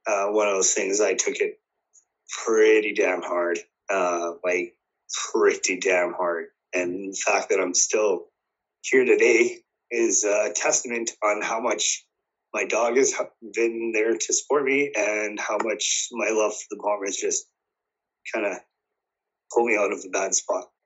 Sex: male